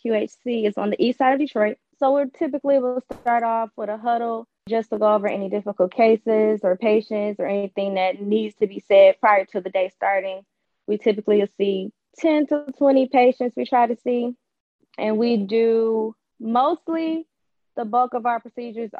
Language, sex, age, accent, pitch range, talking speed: English, female, 20-39, American, 205-245 Hz, 190 wpm